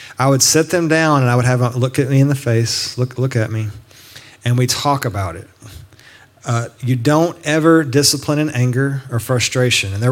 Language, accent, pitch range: English, American, 120-145 Hz